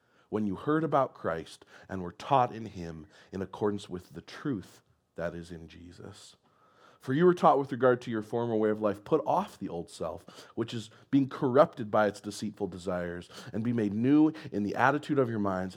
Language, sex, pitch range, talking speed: English, male, 105-170 Hz, 205 wpm